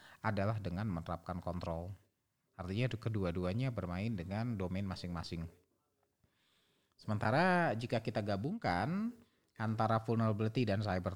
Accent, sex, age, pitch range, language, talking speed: native, male, 30-49, 100-130 Hz, Indonesian, 95 wpm